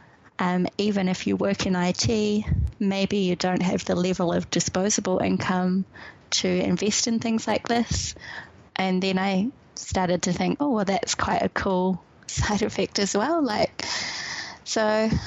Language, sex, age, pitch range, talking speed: English, female, 20-39, 180-210 Hz, 155 wpm